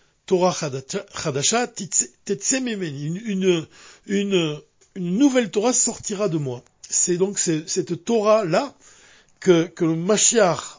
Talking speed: 105 wpm